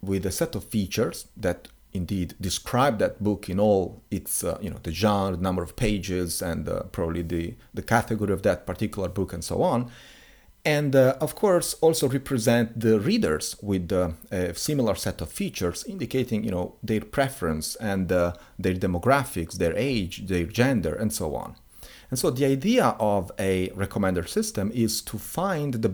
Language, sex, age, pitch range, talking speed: English, male, 40-59, 90-120 Hz, 180 wpm